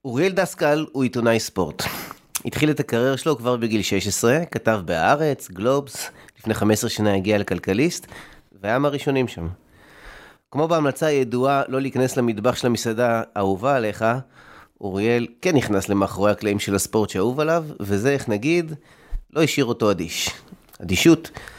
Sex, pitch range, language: male, 105-140 Hz, Hebrew